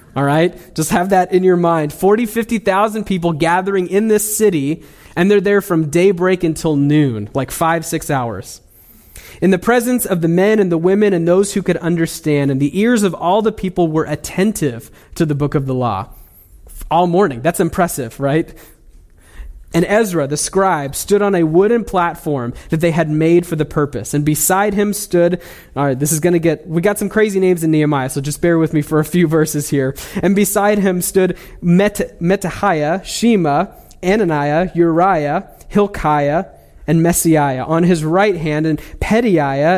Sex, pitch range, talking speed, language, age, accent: male, 145-190 Hz, 180 wpm, English, 20-39, American